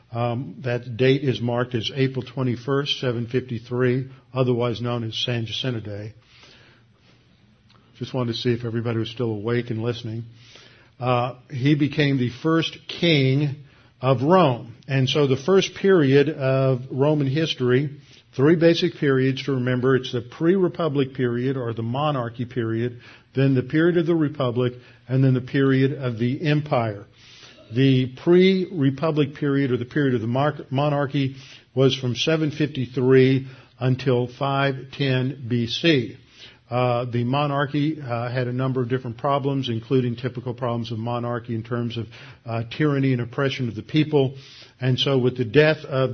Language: English